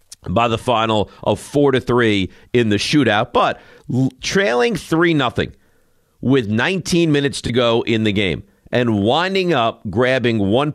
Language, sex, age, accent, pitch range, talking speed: English, male, 50-69, American, 110-140 Hz, 150 wpm